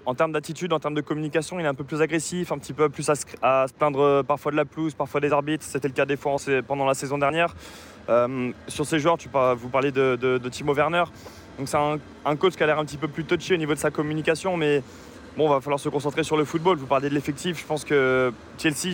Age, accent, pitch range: 20-39, French, 135-155 Hz